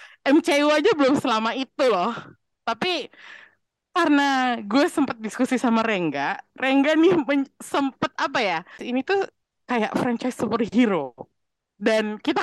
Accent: native